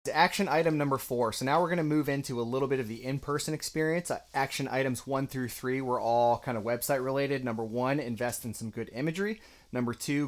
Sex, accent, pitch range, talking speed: male, American, 115-140 Hz, 220 wpm